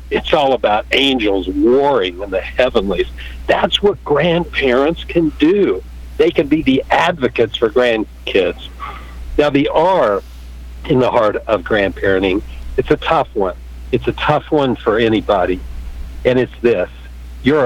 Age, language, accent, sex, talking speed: 60-79, English, American, male, 145 wpm